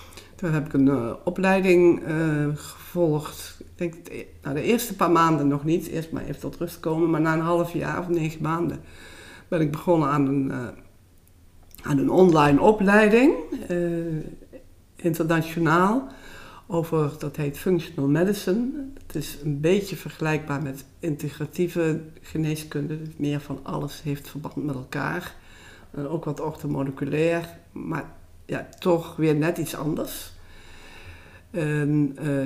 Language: Dutch